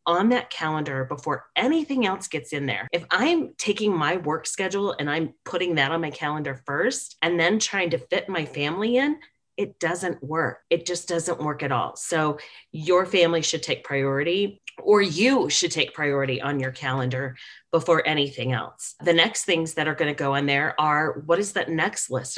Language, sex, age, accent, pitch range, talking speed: English, female, 30-49, American, 140-180 Hz, 195 wpm